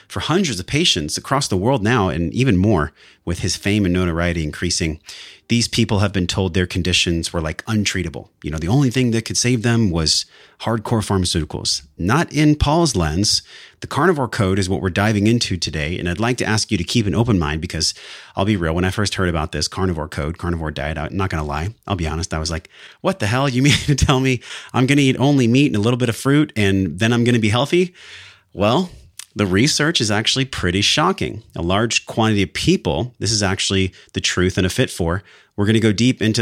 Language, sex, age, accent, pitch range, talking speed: English, male, 30-49, American, 90-115 Hz, 230 wpm